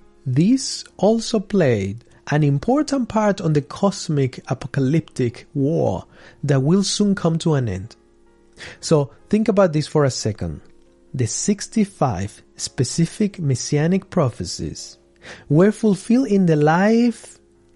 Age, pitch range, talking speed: 30-49, 120-175 Hz, 120 wpm